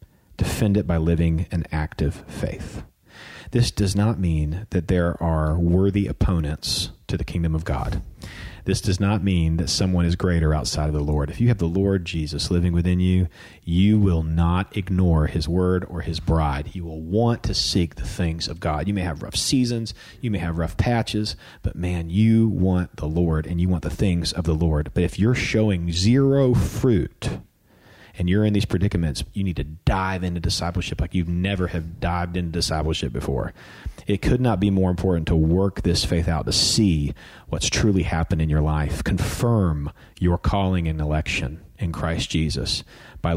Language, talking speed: English, 190 wpm